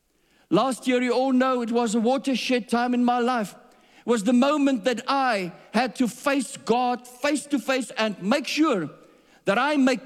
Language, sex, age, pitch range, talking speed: English, male, 50-69, 195-260 Hz, 180 wpm